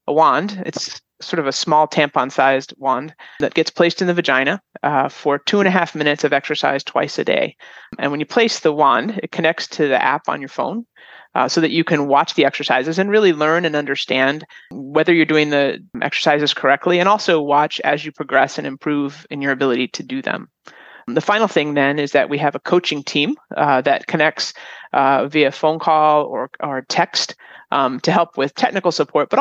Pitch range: 145-175 Hz